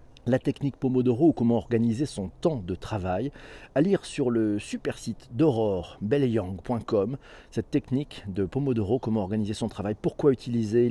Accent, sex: French, male